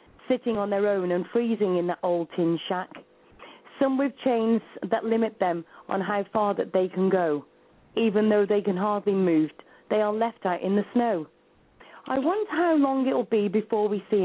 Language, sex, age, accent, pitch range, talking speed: English, female, 40-59, British, 190-235 Hz, 200 wpm